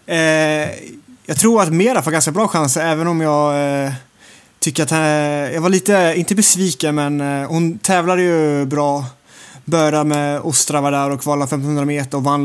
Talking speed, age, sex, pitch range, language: 185 wpm, 20-39, male, 135-150 Hz, English